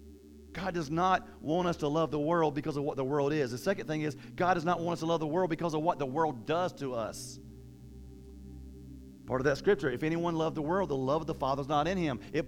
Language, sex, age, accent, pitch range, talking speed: English, male, 40-59, American, 135-185 Hz, 265 wpm